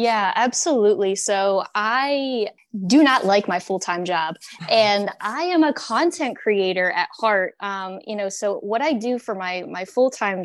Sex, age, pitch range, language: female, 10-29, 175-210 Hz, English